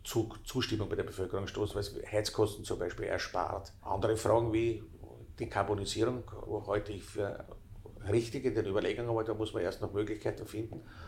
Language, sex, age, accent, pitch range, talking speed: German, male, 50-69, Austrian, 100-110 Hz, 160 wpm